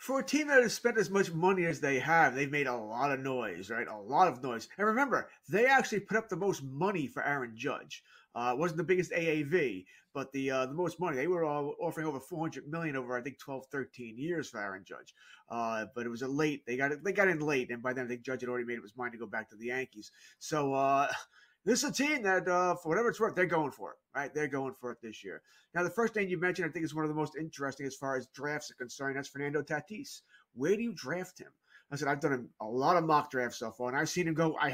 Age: 30-49